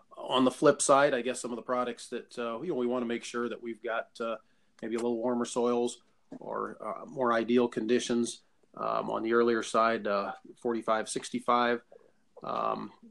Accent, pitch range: American, 115-125 Hz